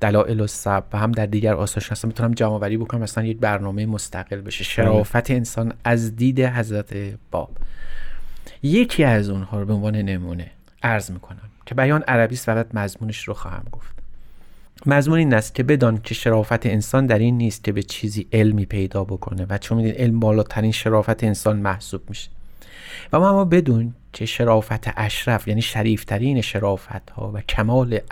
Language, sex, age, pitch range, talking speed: Persian, male, 30-49, 105-120 Hz, 170 wpm